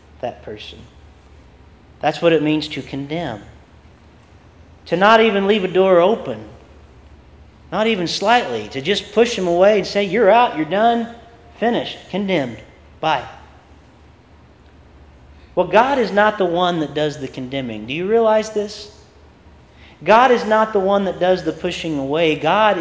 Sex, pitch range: male, 130-210 Hz